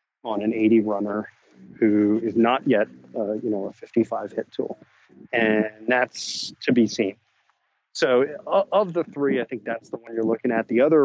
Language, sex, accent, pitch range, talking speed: English, male, American, 110-130 Hz, 185 wpm